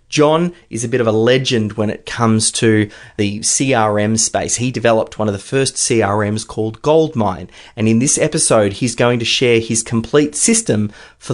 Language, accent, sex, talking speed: English, Australian, male, 185 wpm